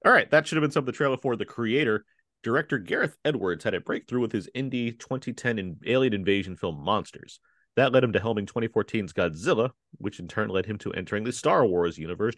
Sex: male